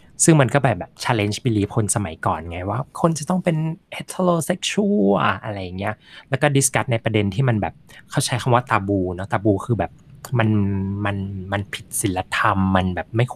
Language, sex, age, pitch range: Thai, male, 20-39, 100-130 Hz